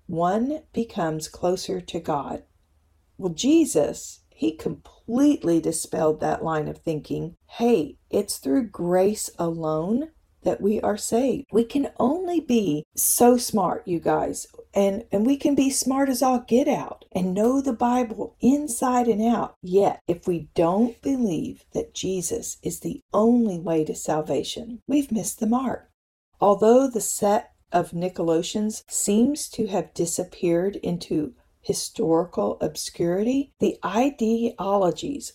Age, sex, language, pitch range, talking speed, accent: 40-59, female, English, 170-240 Hz, 135 wpm, American